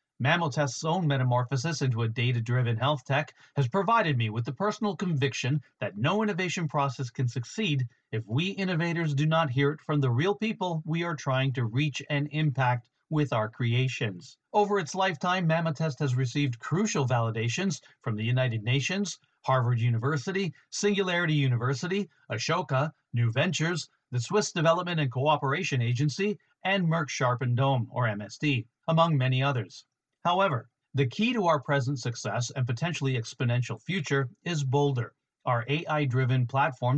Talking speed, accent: 150 wpm, American